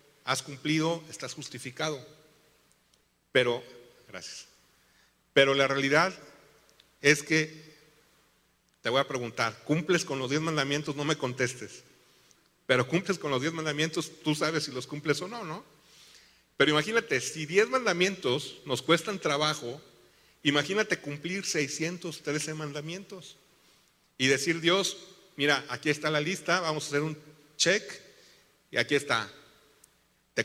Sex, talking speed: male, 130 wpm